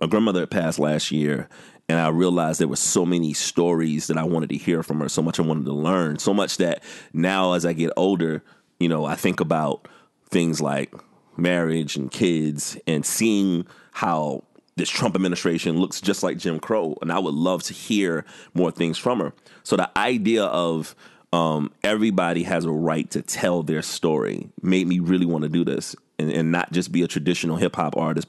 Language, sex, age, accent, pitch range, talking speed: English, male, 30-49, American, 80-90 Hz, 200 wpm